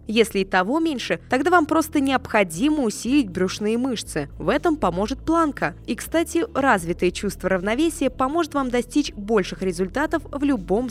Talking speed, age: 150 wpm, 20-39